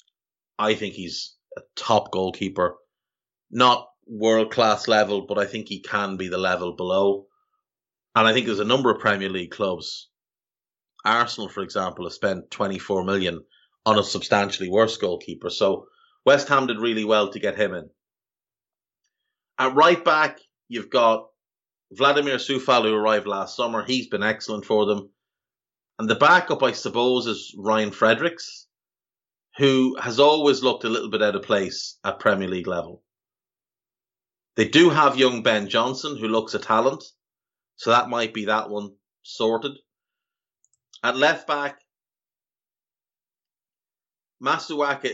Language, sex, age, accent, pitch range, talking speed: English, male, 30-49, Irish, 100-125 Hz, 140 wpm